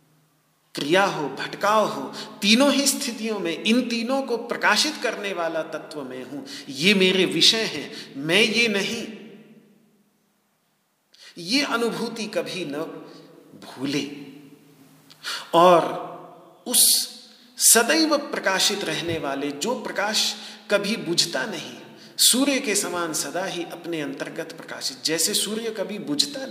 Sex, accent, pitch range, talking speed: male, native, 150-220 Hz, 120 wpm